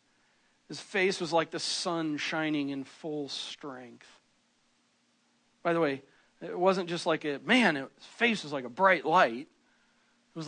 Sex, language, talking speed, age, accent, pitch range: male, English, 160 wpm, 40-59, American, 175-235 Hz